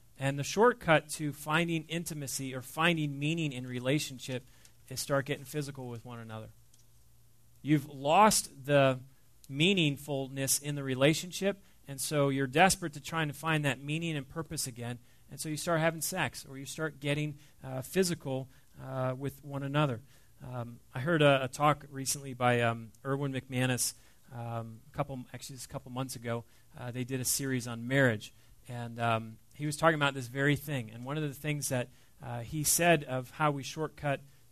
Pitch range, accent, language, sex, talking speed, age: 125-150 Hz, American, English, male, 180 wpm, 30-49